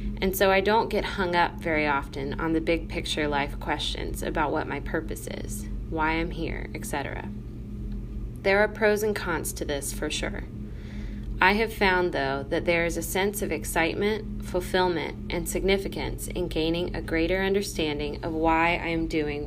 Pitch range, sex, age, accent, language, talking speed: 115-185 Hz, female, 20-39, American, English, 175 wpm